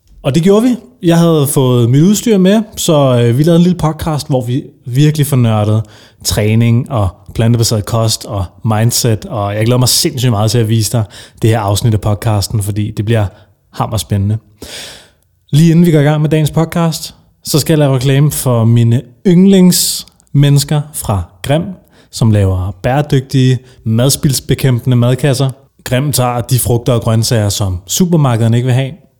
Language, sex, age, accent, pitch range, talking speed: Danish, male, 30-49, native, 115-150 Hz, 165 wpm